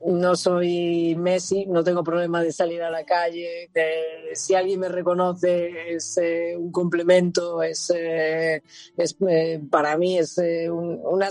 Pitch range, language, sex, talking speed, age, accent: 170-190 Hz, Spanish, female, 160 wpm, 20-39, Spanish